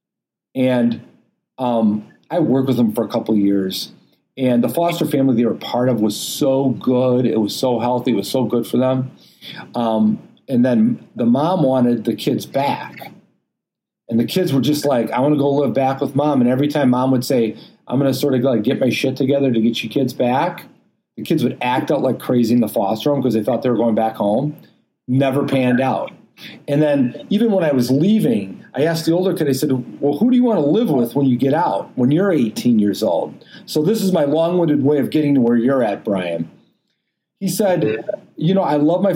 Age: 40-59